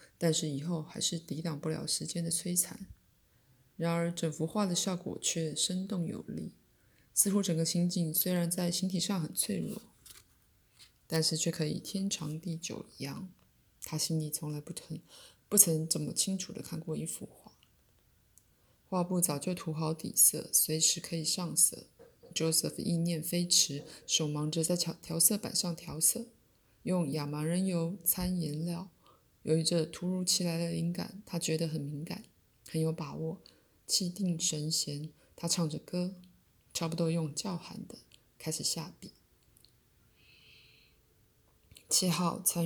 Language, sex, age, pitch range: Chinese, female, 20-39, 155-180 Hz